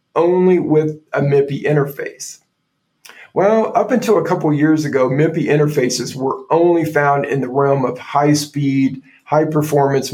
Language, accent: English, American